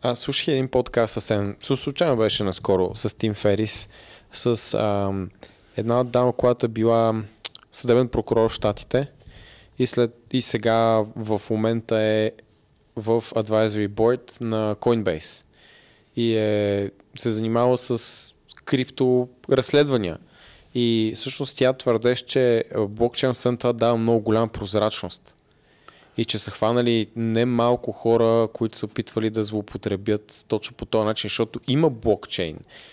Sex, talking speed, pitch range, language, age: male, 125 wpm, 110-120 Hz, Bulgarian, 20-39